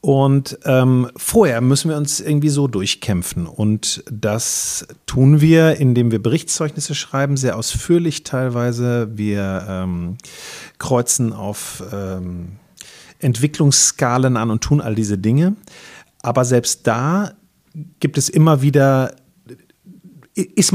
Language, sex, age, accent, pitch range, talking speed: German, male, 40-59, German, 110-150 Hz, 115 wpm